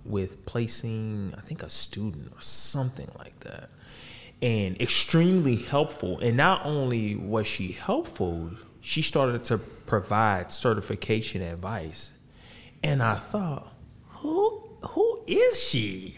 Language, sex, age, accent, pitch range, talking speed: English, male, 20-39, American, 115-165 Hz, 120 wpm